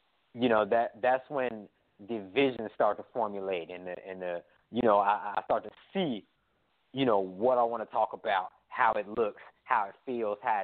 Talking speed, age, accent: 205 wpm, 20-39, American